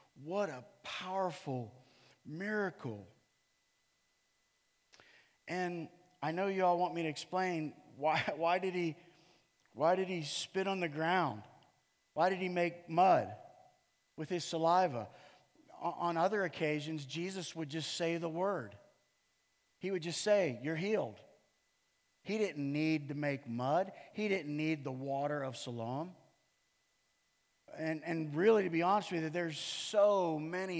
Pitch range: 145-180 Hz